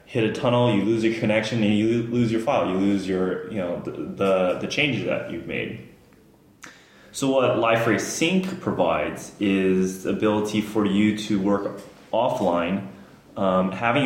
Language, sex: English, male